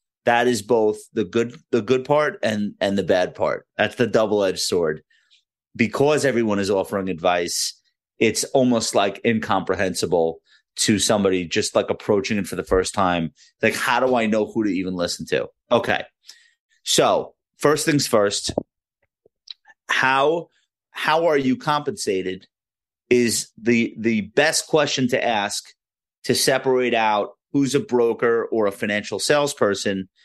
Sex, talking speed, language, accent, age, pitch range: male, 145 wpm, English, American, 30-49, 110-145 Hz